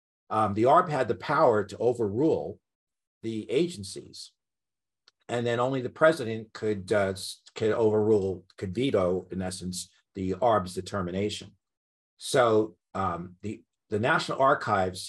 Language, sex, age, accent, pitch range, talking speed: English, male, 50-69, American, 95-125 Hz, 125 wpm